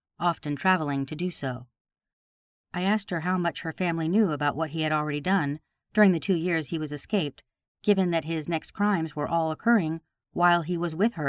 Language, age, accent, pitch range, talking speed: English, 50-69, American, 145-180 Hz, 205 wpm